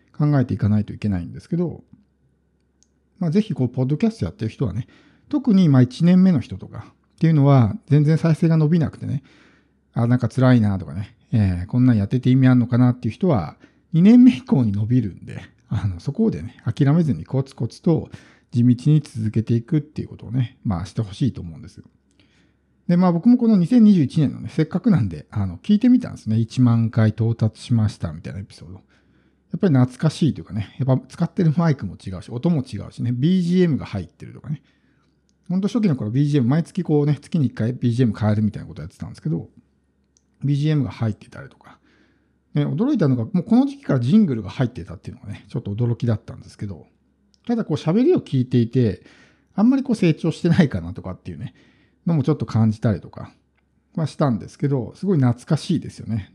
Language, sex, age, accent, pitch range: Japanese, male, 50-69, native, 105-160 Hz